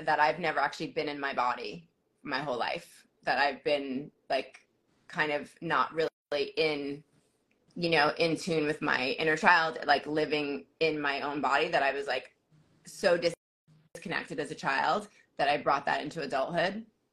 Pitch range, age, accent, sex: 150-175 Hz, 20-39, American, female